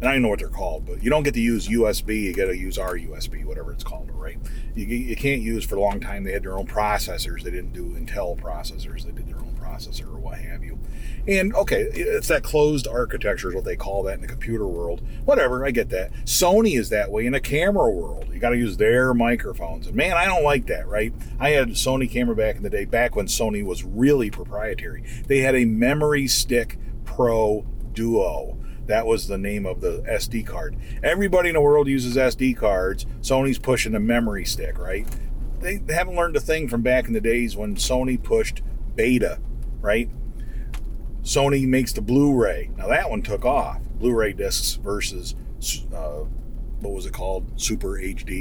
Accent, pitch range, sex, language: American, 110-130 Hz, male, English